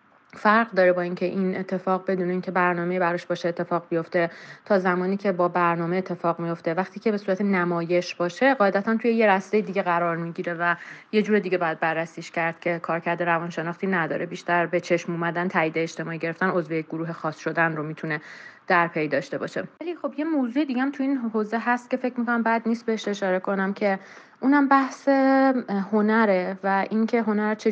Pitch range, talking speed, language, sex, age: 175-215 Hz, 190 wpm, Persian, female, 30-49